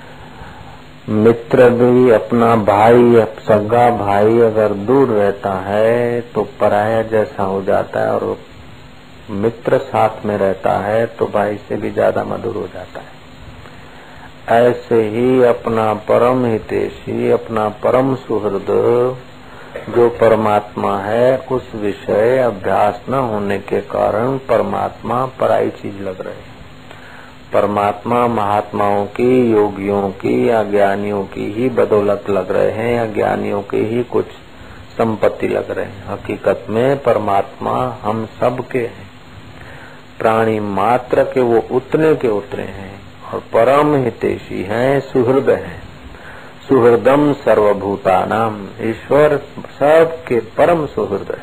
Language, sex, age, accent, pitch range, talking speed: Hindi, male, 50-69, native, 105-125 Hz, 120 wpm